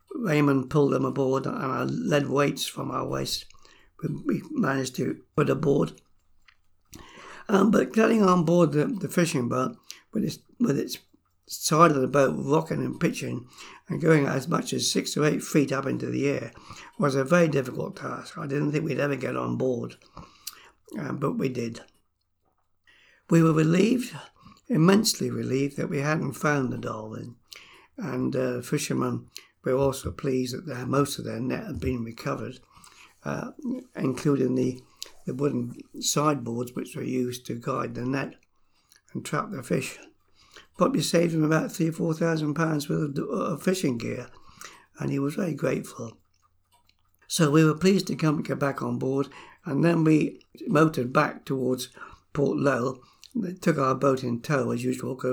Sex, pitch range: male, 125-160 Hz